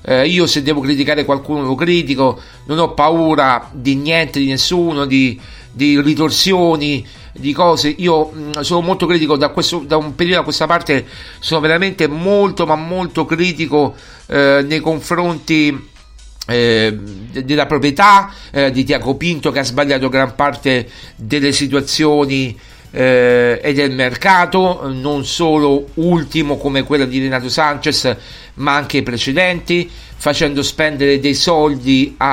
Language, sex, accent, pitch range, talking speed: Italian, male, native, 130-155 Hz, 140 wpm